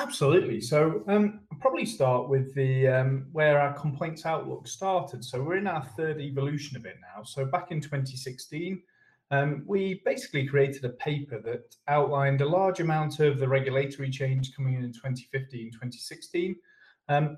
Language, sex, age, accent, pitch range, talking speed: English, male, 30-49, British, 130-165 Hz, 160 wpm